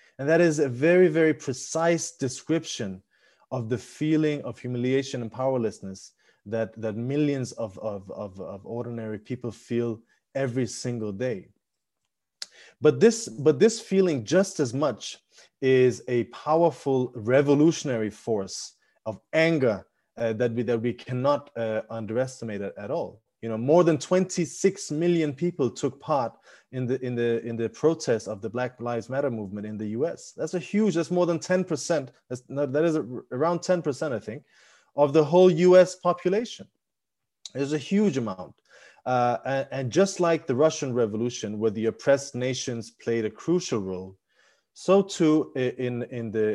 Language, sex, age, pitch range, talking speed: English, male, 30-49, 115-160 Hz, 155 wpm